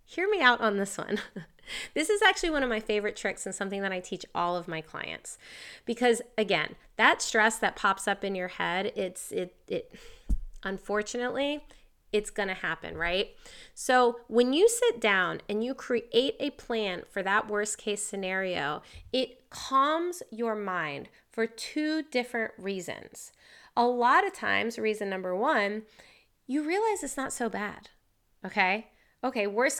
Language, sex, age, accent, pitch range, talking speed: English, female, 30-49, American, 195-275 Hz, 165 wpm